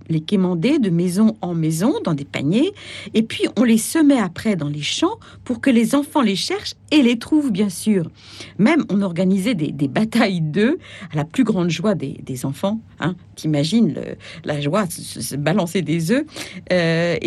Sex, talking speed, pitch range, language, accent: female, 195 wpm, 170-255 Hz, French, French